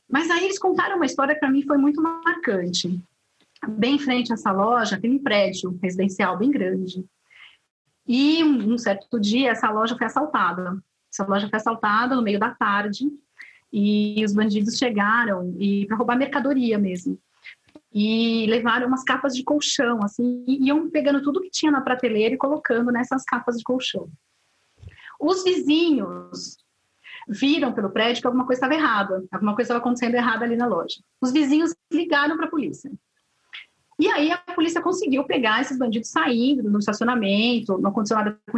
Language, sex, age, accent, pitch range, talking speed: Portuguese, female, 30-49, Brazilian, 210-275 Hz, 170 wpm